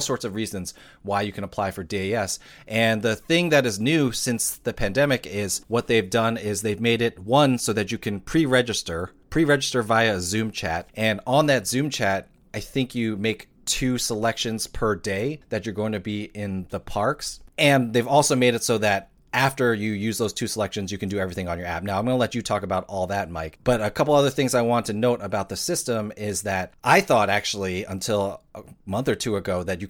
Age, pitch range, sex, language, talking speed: 30-49, 100-125 Hz, male, English, 235 wpm